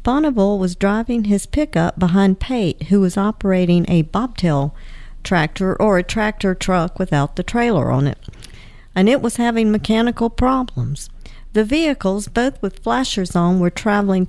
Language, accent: English, American